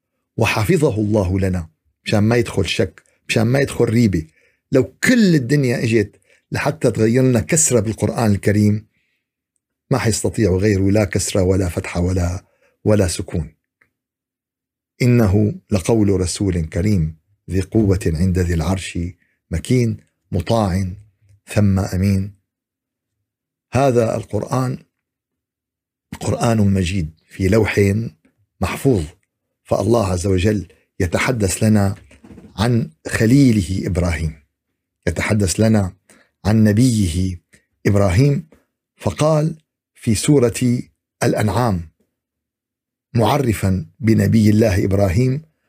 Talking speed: 95 wpm